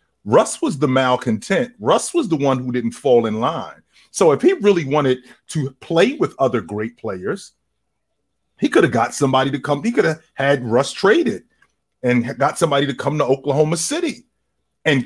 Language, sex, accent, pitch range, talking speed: English, male, American, 130-205 Hz, 185 wpm